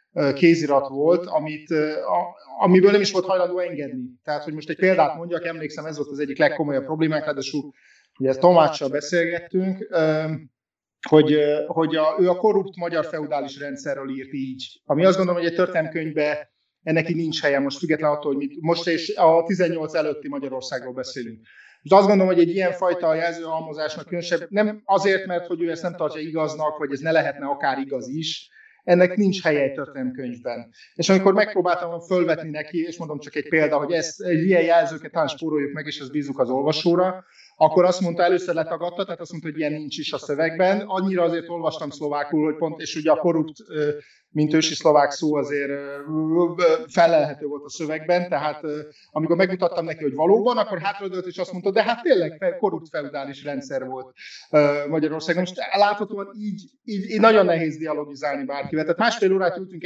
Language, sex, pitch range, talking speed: Hungarian, male, 150-180 Hz, 175 wpm